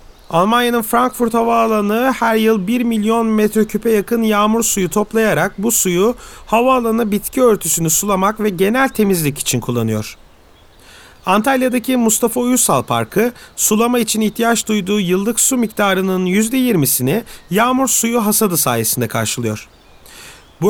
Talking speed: 120 wpm